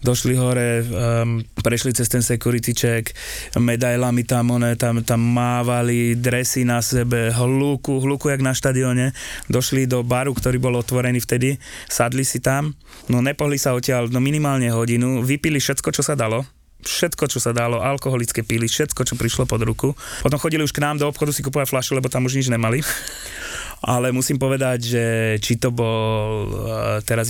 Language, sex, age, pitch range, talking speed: Slovak, male, 20-39, 115-130 Hz, 170 wpm